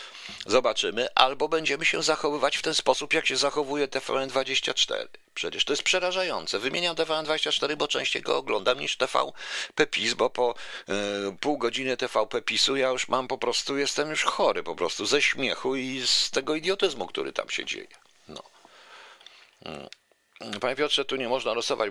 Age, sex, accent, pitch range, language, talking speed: 50-69, male, native, 130-210 Hz, Polish, 160 wpm